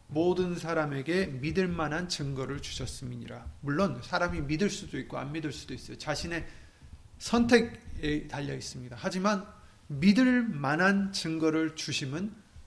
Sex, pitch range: male, 150-205 Hz